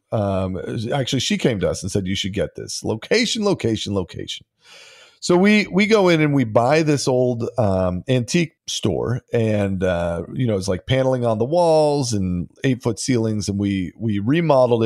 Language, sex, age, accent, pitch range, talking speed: English, male, 40-59, American, 100-140 Hz, 180 wpm